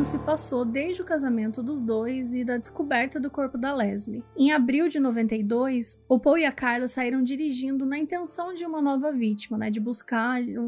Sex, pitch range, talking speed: female, 235-280 Hz, 190 wpm